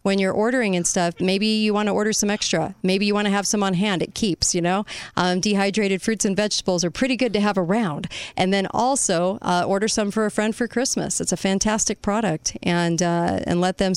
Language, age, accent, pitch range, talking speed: English, 40-59, American, 175-215 Hz, 235 wpm